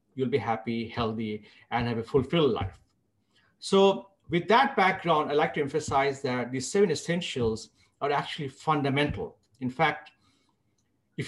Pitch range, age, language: 115-165 Hz, 50-69, English